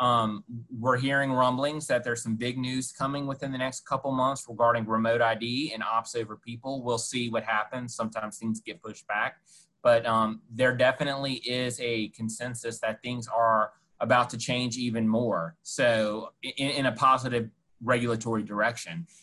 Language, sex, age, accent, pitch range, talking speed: English, male, 30-49, American, 115-130 Hz, 165 wpm